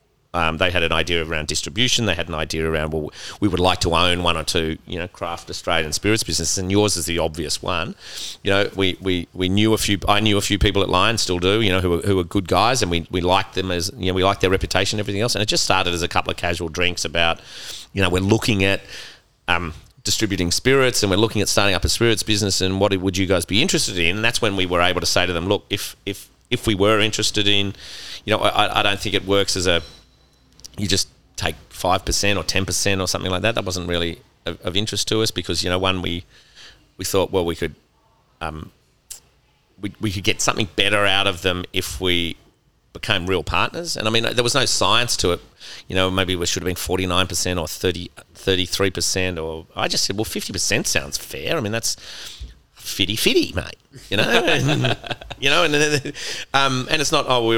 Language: English